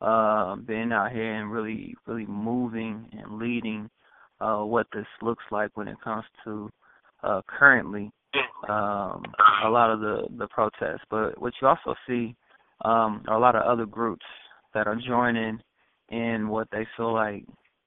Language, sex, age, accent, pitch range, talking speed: English, male, 20-39, American, 110-120 Hz, 160 wpm